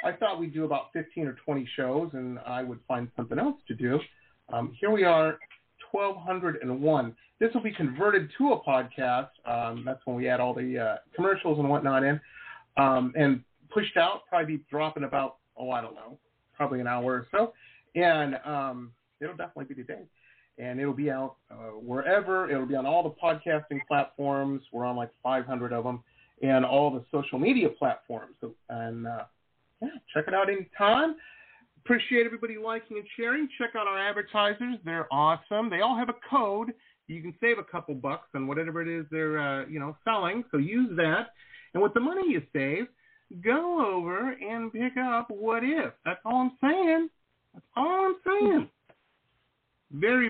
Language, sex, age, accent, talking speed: English, male, 40-59, American, 185 wpm